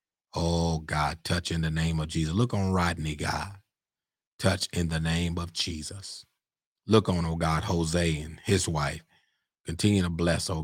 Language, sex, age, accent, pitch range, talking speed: English, male, 30-49, American, 80-90 Hz, 170 wpm